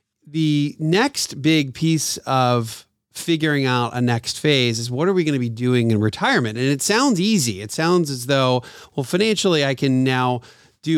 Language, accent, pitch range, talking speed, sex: English, American, 120-155 Hz, 185 wpm, male